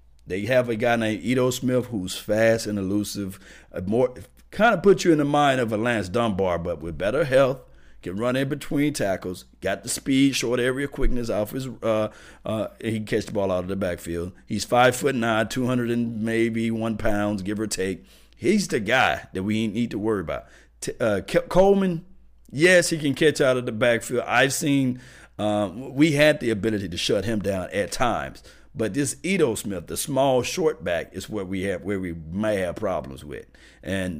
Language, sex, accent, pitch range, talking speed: English, male, American, 90-120 Hz, 205 wpm